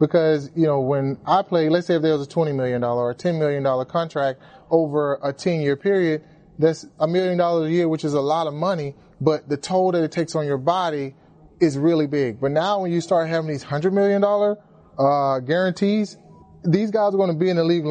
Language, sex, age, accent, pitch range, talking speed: English, male, 30-49, American, 150-180 Hz, 220 wpm